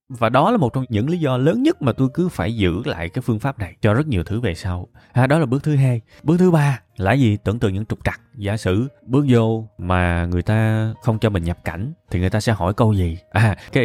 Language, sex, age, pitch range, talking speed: Vietnamese, male, 20-39, 100-140 Hz, 275 wpm